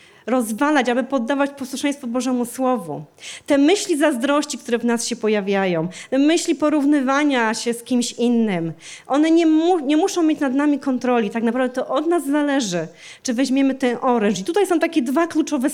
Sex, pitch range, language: female, 230-285 Hz, Polish